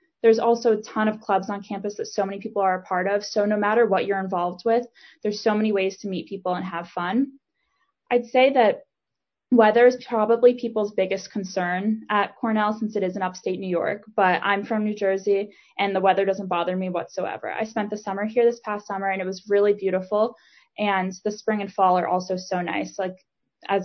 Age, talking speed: 20-39, 220 wpm